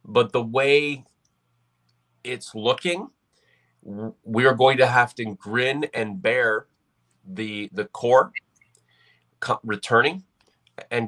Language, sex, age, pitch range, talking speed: English, male, 30-49, 100-135 Hz, 110 wpm